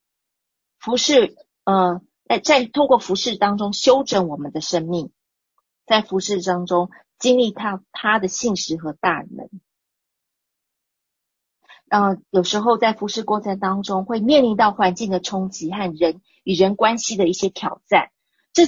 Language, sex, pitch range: Chinese, female, 180-245 Hz